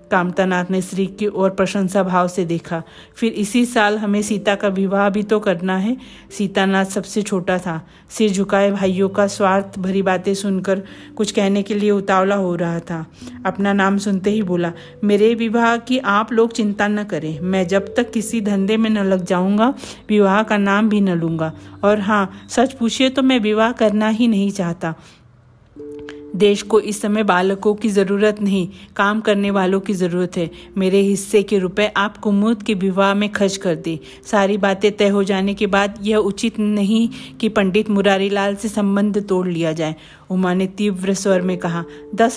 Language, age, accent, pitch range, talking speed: Hindi, 50-69, native, 190-215 Hz, 185 wpm